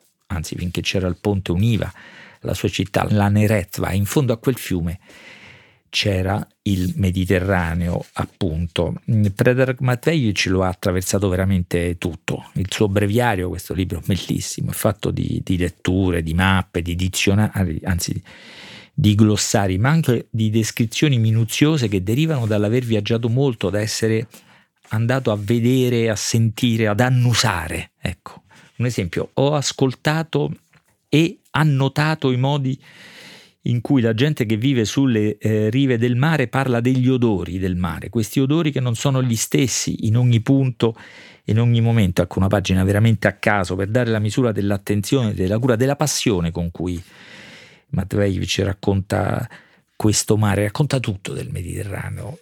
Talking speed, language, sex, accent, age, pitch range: 145 wpm, Italian, male, native, 50-69, 95-125 Hz